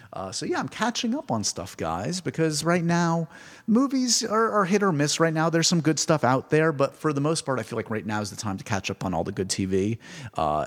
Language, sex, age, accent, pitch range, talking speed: English, male, 30-49, American, 95-140 Hz, 270 wpm